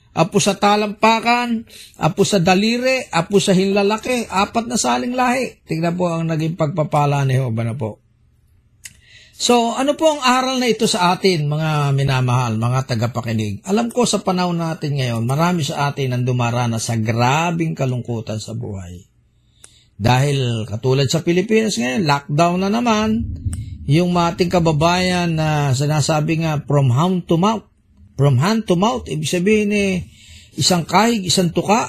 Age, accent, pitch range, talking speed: 50-69, native, 120-205 Hz, 155 wpm